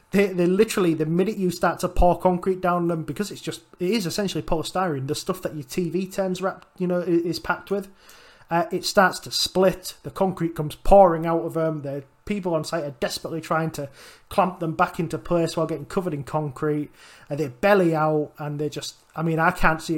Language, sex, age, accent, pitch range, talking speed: English, male, 20-39, British, 150-180 Hz, 220 wpm